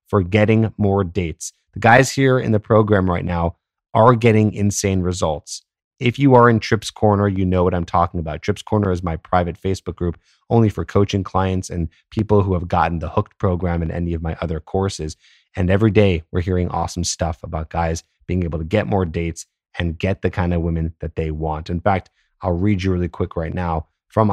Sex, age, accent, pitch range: male, 30-49, American, 90-115 Hz